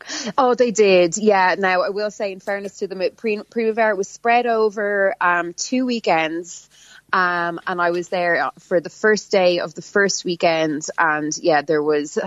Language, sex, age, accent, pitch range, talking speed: English, female, 20-39, Irish, 165-190 Hz, 175 wpm